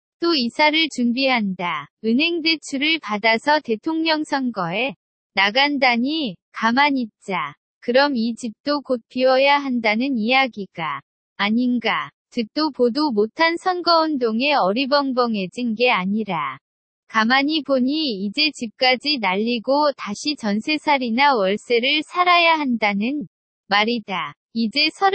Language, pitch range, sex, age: Korean, 225-295 Hz, female, 20-39